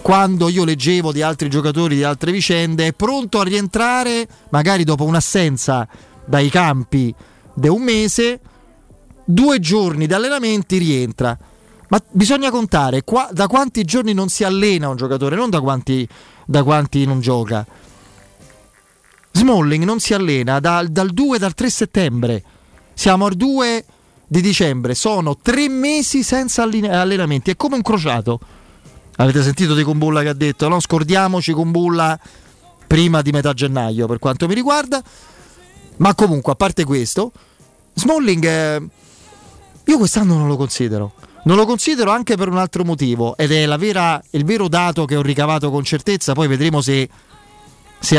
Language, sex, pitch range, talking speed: Italian, male, 140-205 Hz, 150 wpm